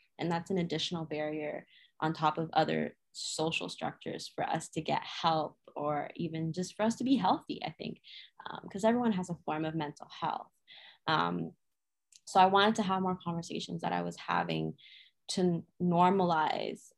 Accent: American